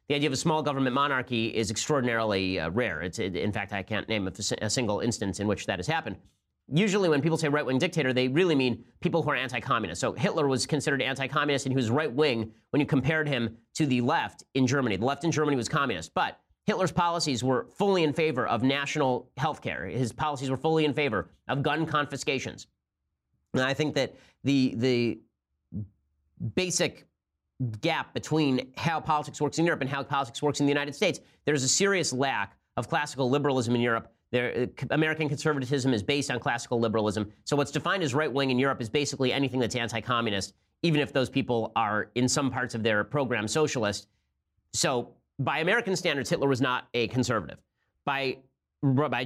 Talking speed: 190 wpm